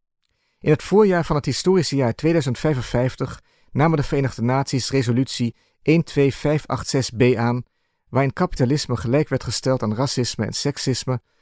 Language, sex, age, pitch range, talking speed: Dutch, male, 50-69, 115-145 Hz, 125 wpm